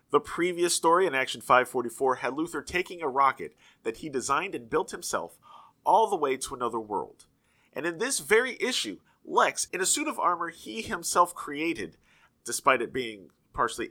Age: 30-49